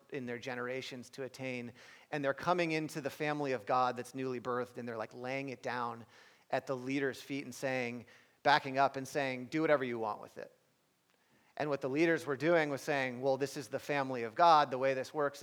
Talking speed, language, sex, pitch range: 220 wpm, English, male, 125-155 Hz